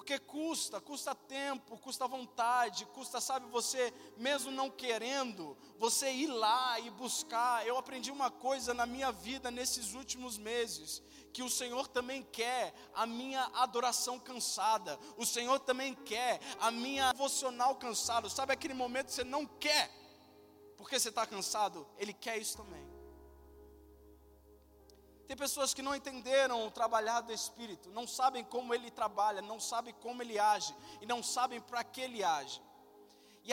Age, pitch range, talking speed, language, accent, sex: 20-39, 225-265 Hz, 155 wpm, Portuguese, Brazilian, male